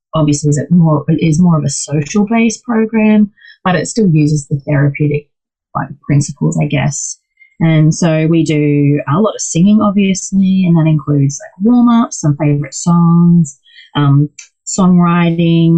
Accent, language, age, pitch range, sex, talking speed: Australian, English, 30-49, 150-185 Hz, female, 150 wpm